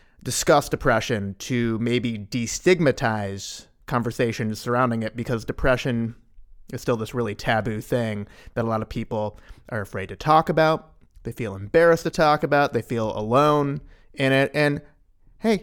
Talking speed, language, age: 150 wpm, English, 30-49